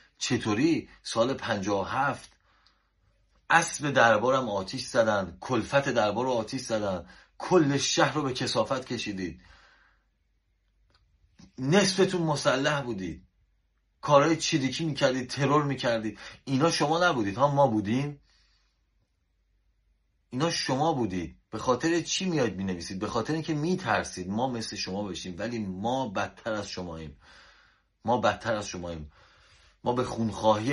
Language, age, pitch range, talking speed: Persian, 30-49, 90-125 Hz, 125 wpm